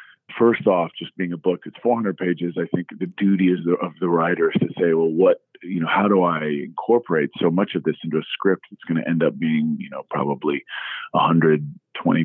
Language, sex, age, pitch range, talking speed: English, male, 40-59, 85-100 Hz, 220 wpm